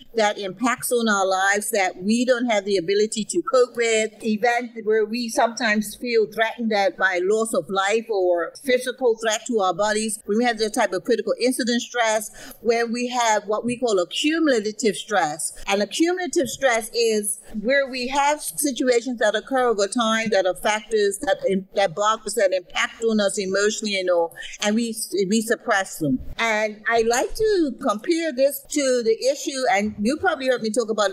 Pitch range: 210-255 Hz